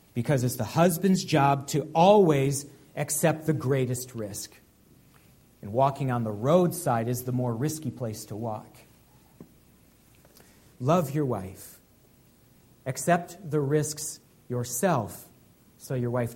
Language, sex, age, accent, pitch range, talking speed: English, male, 40-59, American, 135-210 Hz, 120 wpm